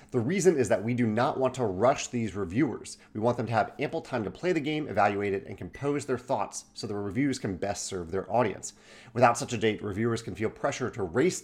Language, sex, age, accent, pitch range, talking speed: English, male, 30-49, American, 100-135 Hz, 245 wpm